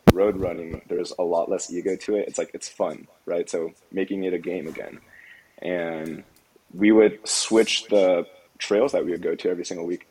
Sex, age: male, 20-39